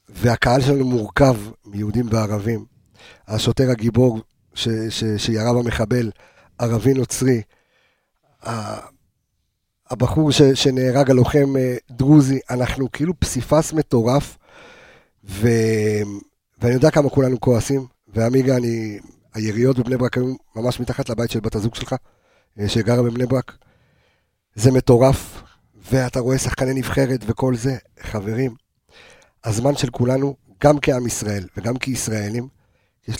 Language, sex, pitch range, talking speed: Hebrew, male, 110-130 Hz, 105 wpm